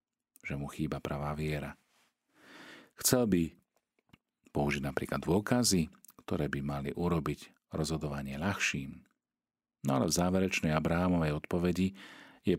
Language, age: Slovak, 50-69